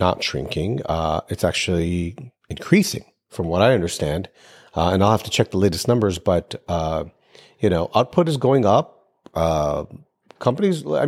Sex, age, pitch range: male, 40-59, 100-135 Hz